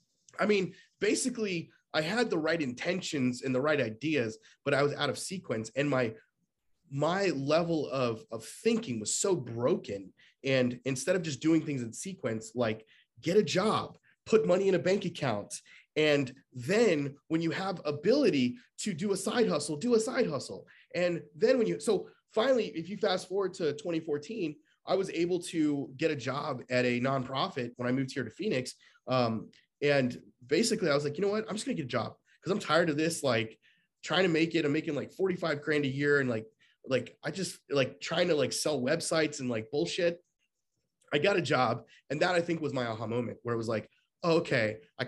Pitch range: 125-175 Hz